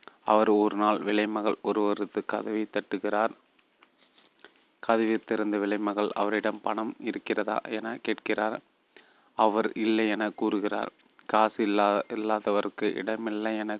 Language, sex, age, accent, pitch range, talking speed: Tamil, male, 30-49, native, 105-110 Hz, 100 wpm